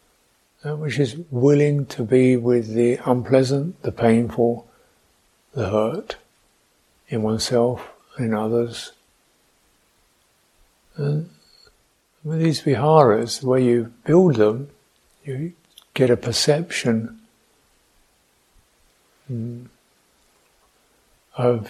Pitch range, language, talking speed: 115-140 Hz, English, 80 wpm